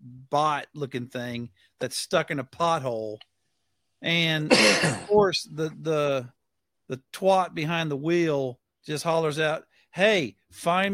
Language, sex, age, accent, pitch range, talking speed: English, male, 50-69, American, 135-175 Hz, 125 wpm